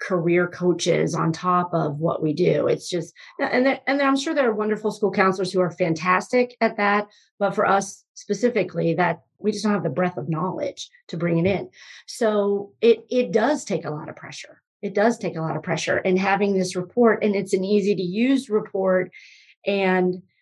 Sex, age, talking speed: female, 40-59, 210 wpm